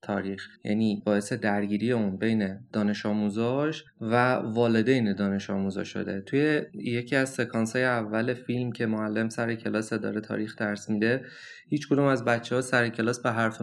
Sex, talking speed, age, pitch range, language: male, 160 wpm, 20-39, 110-135 Hz, Persian